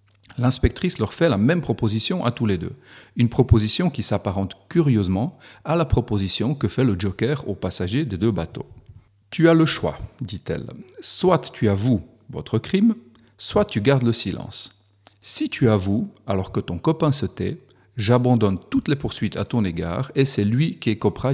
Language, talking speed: French, 185 wpm